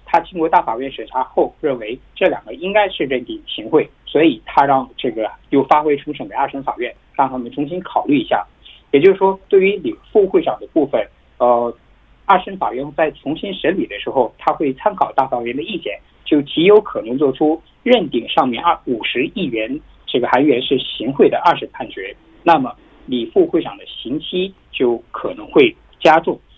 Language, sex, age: Korean, male, 50-69